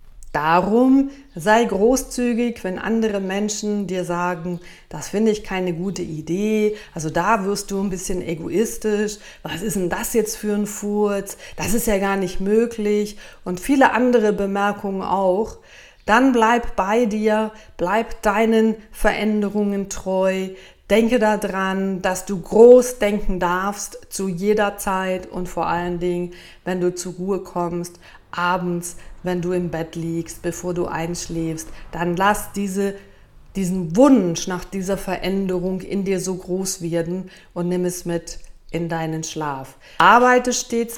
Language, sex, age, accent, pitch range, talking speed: German, female, 40-59, German, 180-210 Hz, 140 wpm